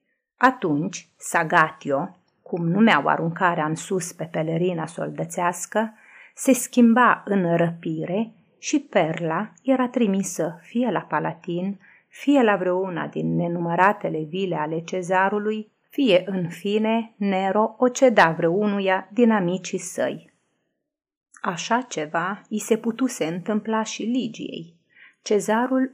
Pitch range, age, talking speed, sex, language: 170-220 Hz, 30-49, 110 wpm, female, Romanian